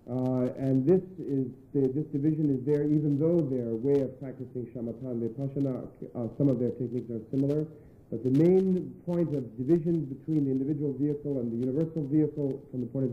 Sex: male